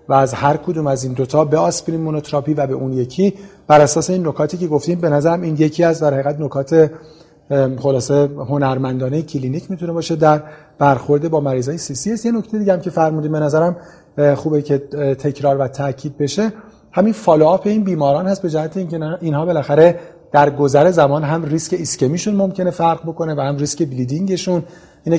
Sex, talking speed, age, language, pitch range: male, 185 wpm, 40-59, Persian, 145-180 Hz